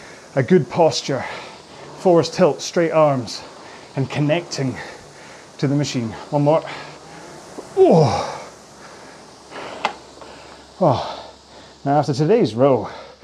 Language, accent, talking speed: English, British, 85 wpm